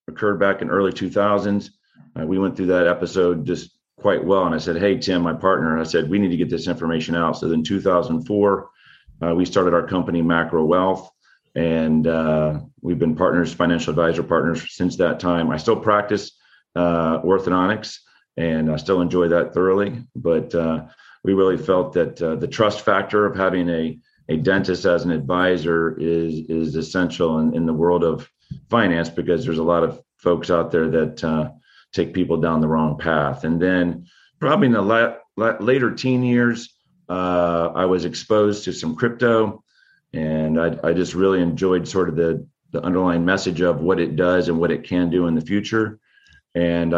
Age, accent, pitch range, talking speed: 40-59, American, 80-95 Hz, 185 wpm